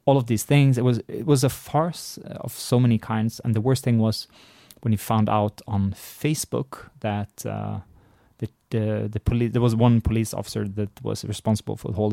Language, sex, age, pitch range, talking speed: English, male, 20-39, 105-120 Hz, 215 wpm